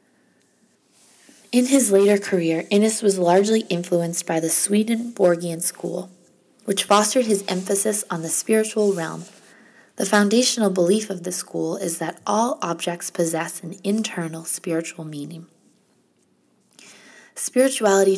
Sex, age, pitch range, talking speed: female, 20-39, 175-210 Hz, 120 wpm